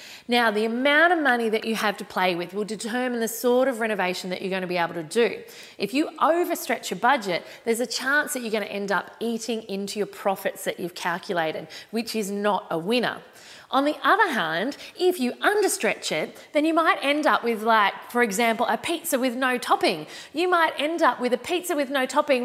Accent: Australian